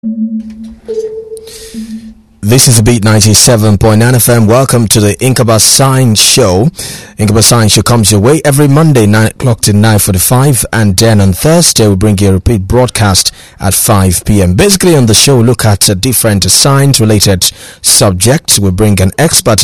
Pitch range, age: 100-130 Hz, 30-49